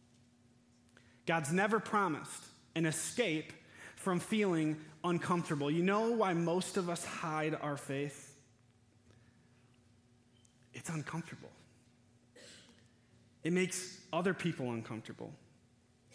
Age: 20-39